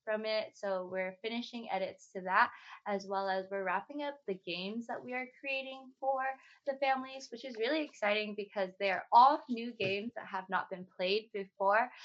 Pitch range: 195-235 Hz